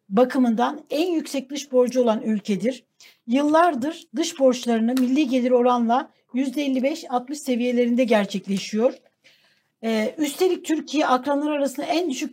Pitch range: 230-290 Hz